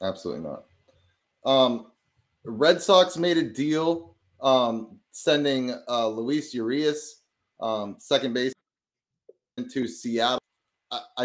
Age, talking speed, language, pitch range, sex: 30-49, 100 wpm, English, 110-150 Hz, male